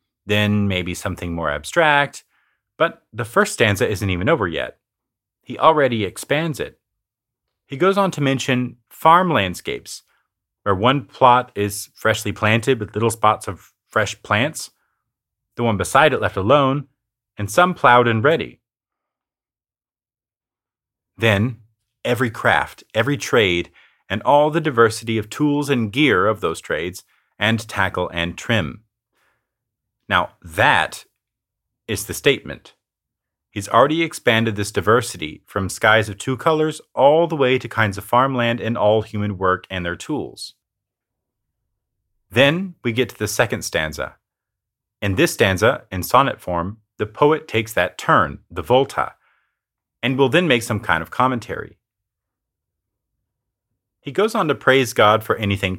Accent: American